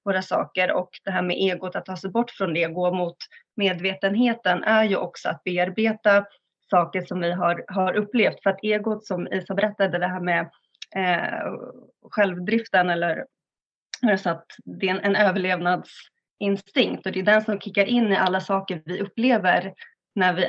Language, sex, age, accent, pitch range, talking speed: Swedish, female, 20-39, native, 185-215 Hz, 180 wpm